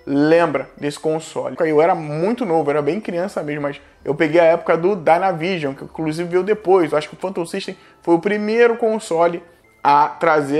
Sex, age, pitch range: male, 20-39, 150-185 Hz